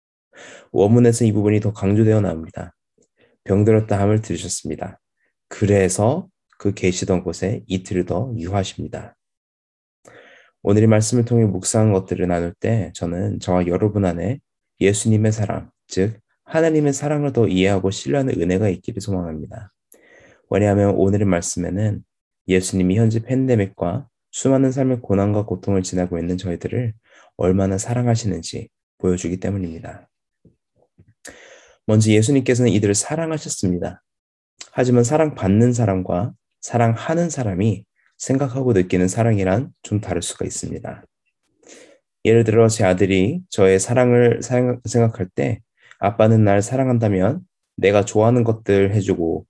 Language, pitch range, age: Korean, 95-115 Hz, 20-39